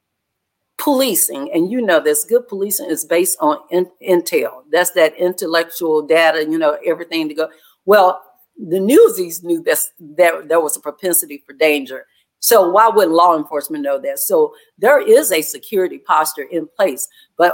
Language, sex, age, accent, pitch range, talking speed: English, female, 50-69, American, 165-230 Hz, 160 wpm